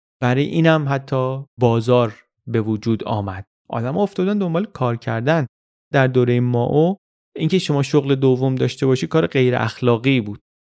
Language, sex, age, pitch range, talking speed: Persian, male, 30-49, 125-160 Hz, 155 wpm